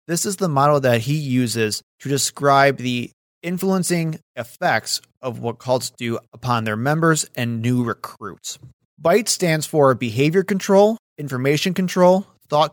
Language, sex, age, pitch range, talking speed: English, male, 30-49, 125-165 Hz, 140 wpm